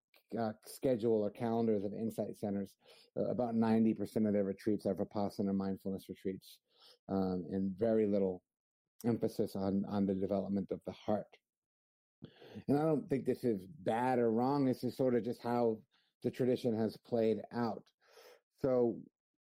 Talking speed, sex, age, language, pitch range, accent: 155 wpm, male, 50-69, English, 100-120 Hz, American